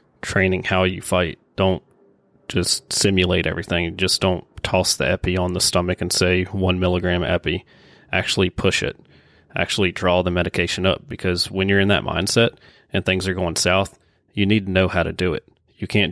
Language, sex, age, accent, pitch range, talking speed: English, male, 30-49, American, 90-100 Hz, 185 wpm